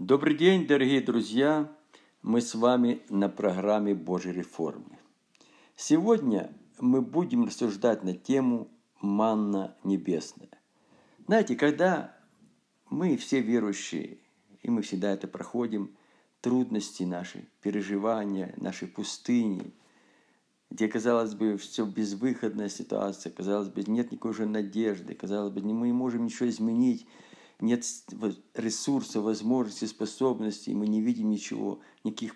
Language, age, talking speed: Russian, 50-69, 115 wpm